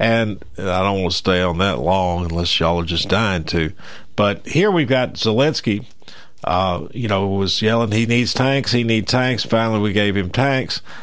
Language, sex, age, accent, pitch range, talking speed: English, male, 50-69, American, 110-145 Hz, 195 wpm